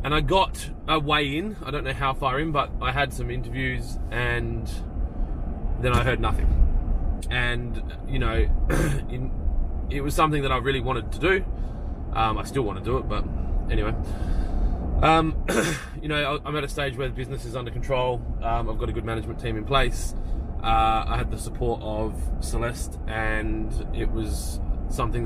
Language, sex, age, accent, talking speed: English, male, 20-39, Australian, 180 wpm